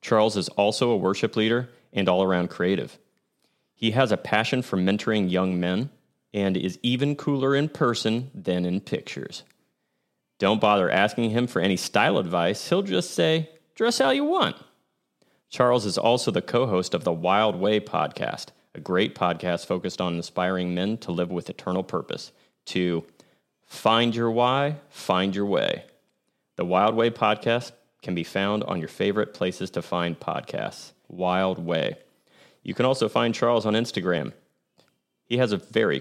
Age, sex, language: 30-49, male, English